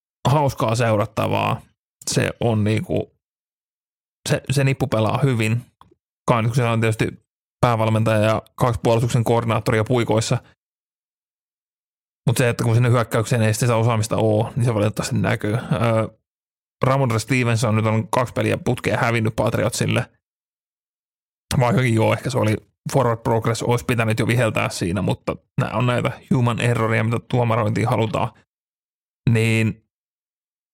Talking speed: 125 wpm